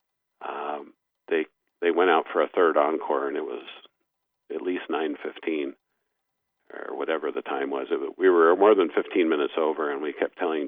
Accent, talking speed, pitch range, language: American, 175 wpm, 340-425 Hz, English